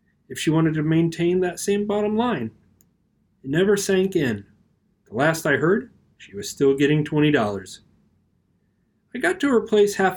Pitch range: 130-195 Hz